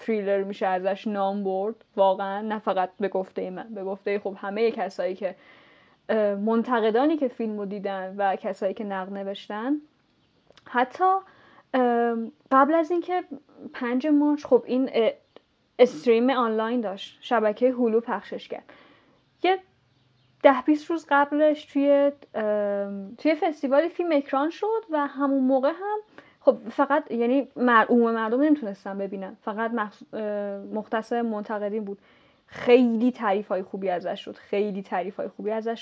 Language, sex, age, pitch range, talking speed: Persian, female, 10-29, 210-275 Hz, 130 wpm